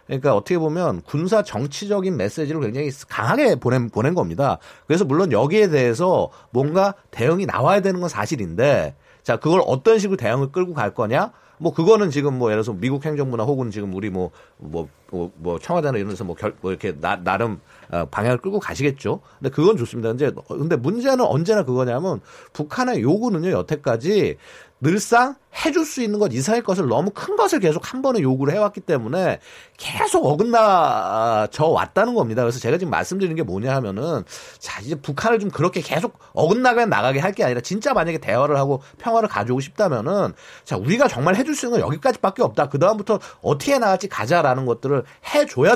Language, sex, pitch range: Korean, male, 130-215 Hz